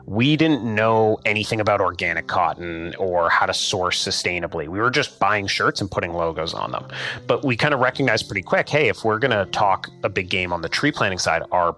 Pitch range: 95-120 Hz